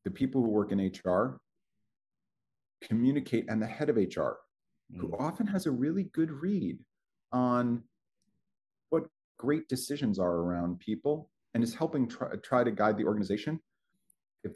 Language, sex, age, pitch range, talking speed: English, male, 40-59, 110-170 Hz, 150 wpm